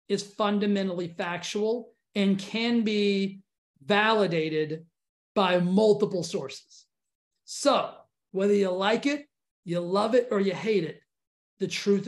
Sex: male